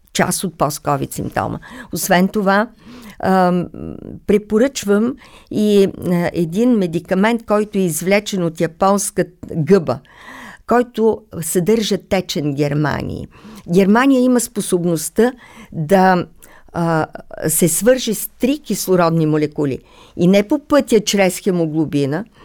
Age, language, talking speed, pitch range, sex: 50-69, Bulgarian, 105 wpm, 170-225 Hz, female